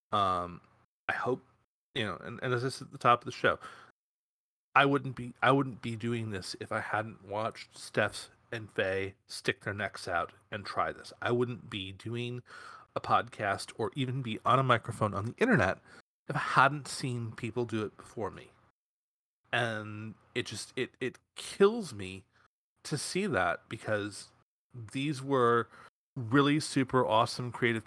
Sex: male